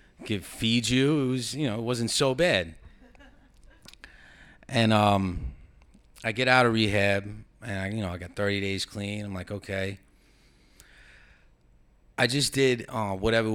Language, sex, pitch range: English, male, 90-110 Hz